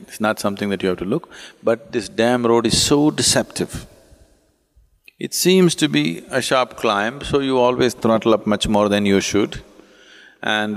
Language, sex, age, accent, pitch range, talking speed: English, male, 50-69, Indian, 105-150 Hz, 185 wpm